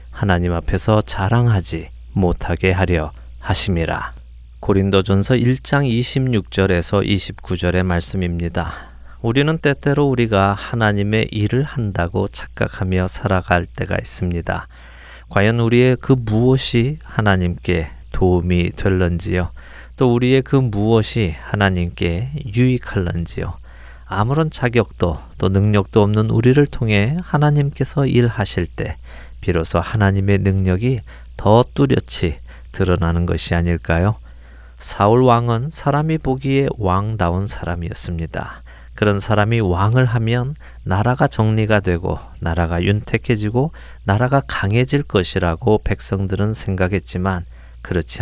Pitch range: 85-120 Hz